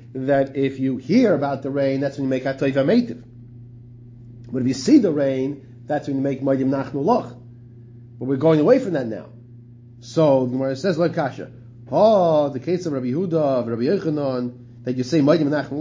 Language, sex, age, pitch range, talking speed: English, male, 30-49, 120-150 Hz, 200 wpm